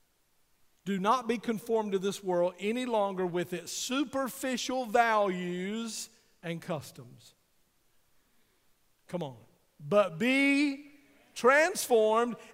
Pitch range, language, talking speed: 190-255 Hz, English, 95 wpm